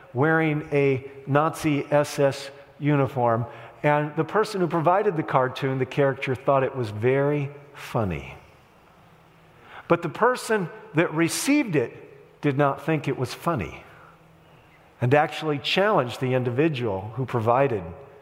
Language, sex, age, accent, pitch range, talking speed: English, male, 50-69, American, 140-205 Hz, 125 wpm